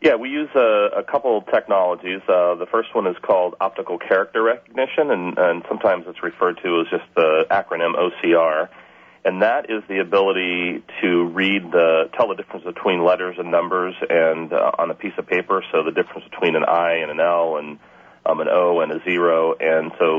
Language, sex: English, male